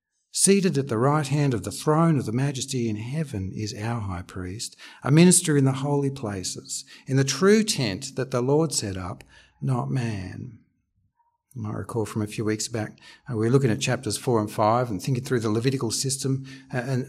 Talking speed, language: 200 wpm, English